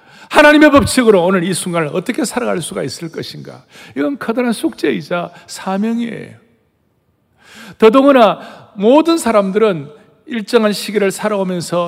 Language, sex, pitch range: Korean, male, 180-235 Hz